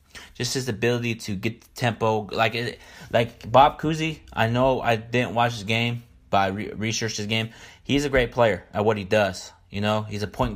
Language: English